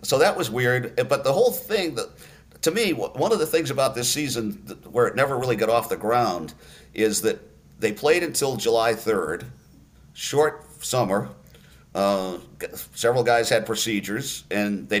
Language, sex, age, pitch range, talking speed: English, male, 50-69, 110-155 Hz, 165 wpm